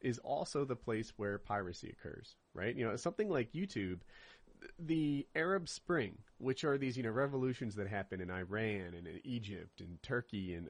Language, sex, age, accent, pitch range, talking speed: English, male, 30-49, American, 115-150 Hz, 180 wpm